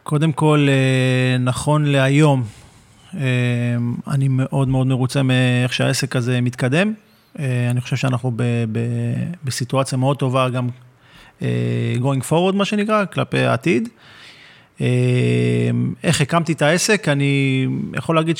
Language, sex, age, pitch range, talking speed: Hebrew, male, 30-49, 125-155 Hz, 110 wpm